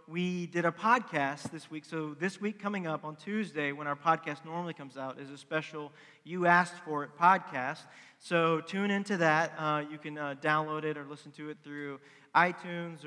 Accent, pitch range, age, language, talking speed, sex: American, 140-165 Hz, 40-59, English, 200 wpm, male